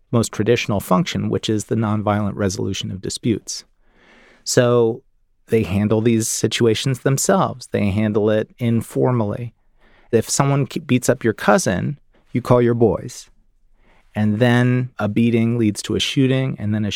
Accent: American